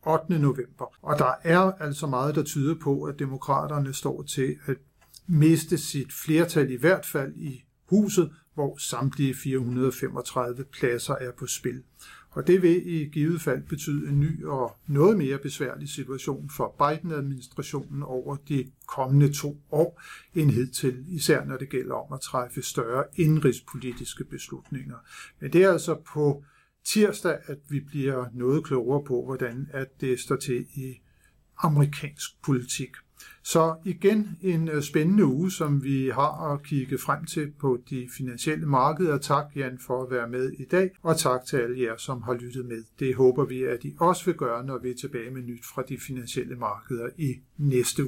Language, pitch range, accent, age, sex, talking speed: Danish, 130-155 Hz, native, 50-69, male, 170 wpm